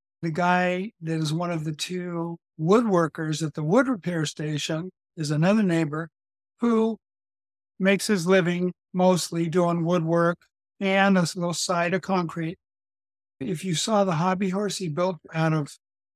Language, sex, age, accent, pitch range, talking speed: English, male, 60-79, American, 160-185 Hz, 150 wpm